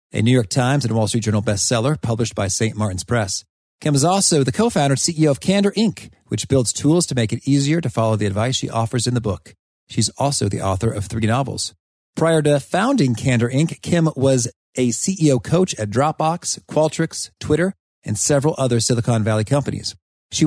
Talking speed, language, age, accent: 200 wpm, English, 40-59, American